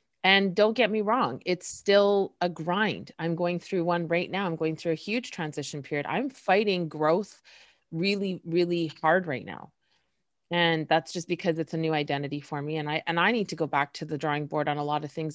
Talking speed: 225 wpm